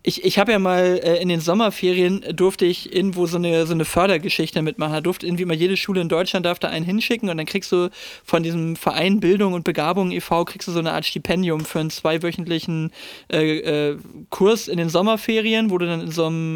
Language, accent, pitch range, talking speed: German, German, 160-190 Hz, 225 wpm